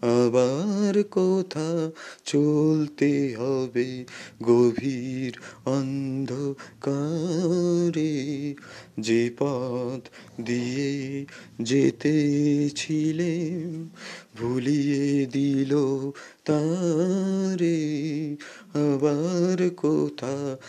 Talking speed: 45 wpm